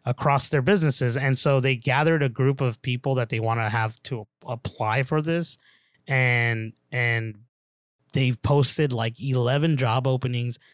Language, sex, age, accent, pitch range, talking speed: English, male, 20-39, American, 115-140 Hz, 155 wpm